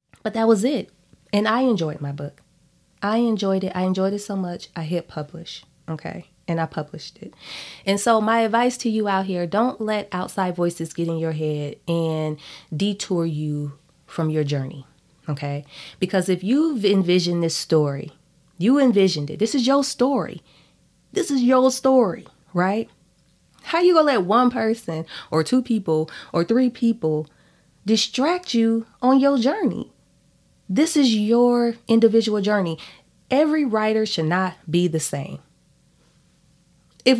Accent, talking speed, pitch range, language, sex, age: American, 160 wpm, 160-225 Hz, English, female, 20-39